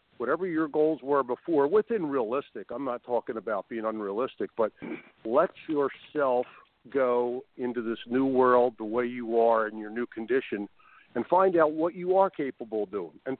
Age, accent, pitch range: 50-69, American, 110-130 Hz